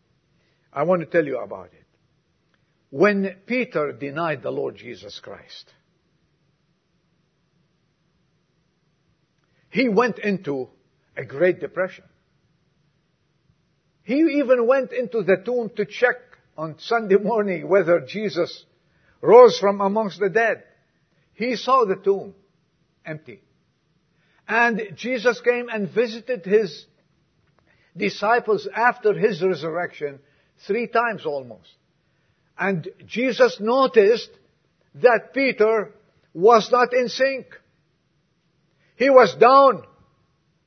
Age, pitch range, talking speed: 50-69, 160-230 Hz, 100 wpm